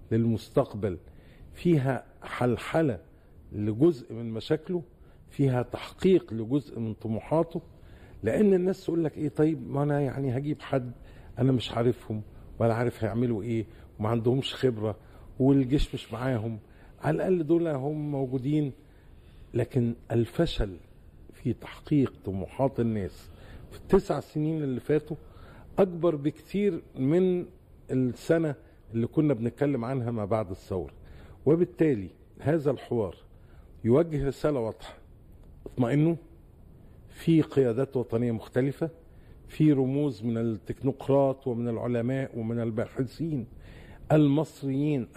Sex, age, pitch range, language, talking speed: male, 50-69, 115-150 Hz, Arabic, 110 wpm